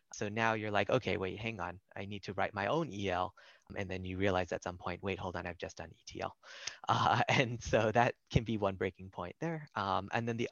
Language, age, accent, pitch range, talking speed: English, 20-39, American, 95-115 Hz, 245 wpm